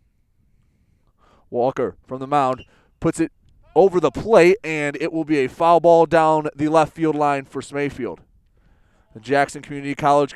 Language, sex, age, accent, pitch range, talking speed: English, male, 20-39, American, 100-150 Hz, 155 wpm